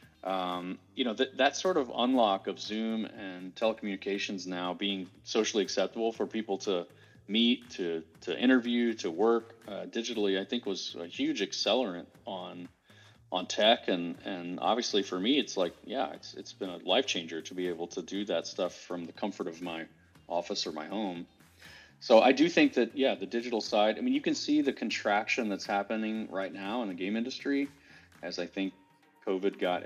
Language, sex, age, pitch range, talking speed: English, male, 30-49, 90-115 Hz, 190 wpm